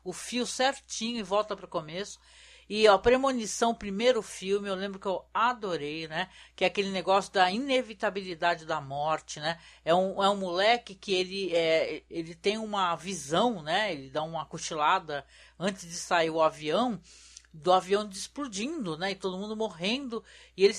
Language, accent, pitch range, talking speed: Portuguese, Brazilian, 175-230 Hz, 165 wpm